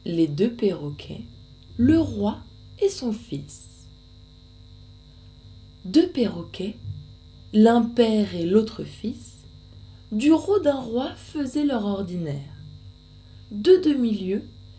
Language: French